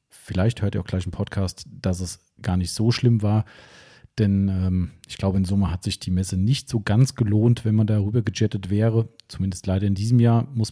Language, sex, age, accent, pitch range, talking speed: German, male, 40-59, German, 100-120 Hz, 220 wpm